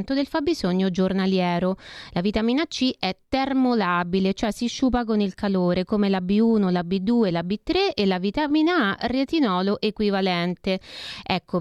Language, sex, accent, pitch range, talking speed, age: Italian, female, native, 185-240 Hz, 145 wpm, 30-49